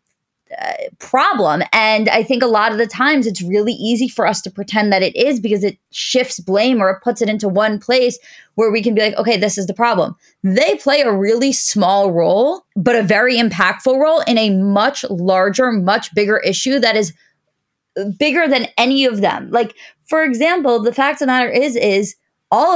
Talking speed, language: 205 wpm, English